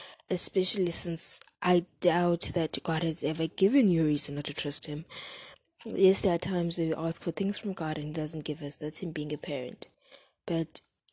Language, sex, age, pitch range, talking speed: English, female, 20-39, 150-190 Hz, 205 wpm